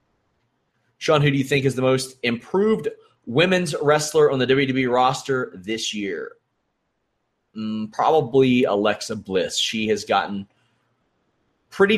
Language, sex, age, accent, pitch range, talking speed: English, male, 30-49, American, 120-160 Hz, 125 wpm